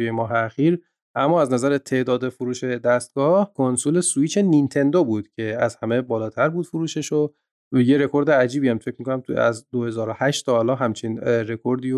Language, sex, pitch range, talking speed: Persian, male, 120-145 Hz, 155 wpm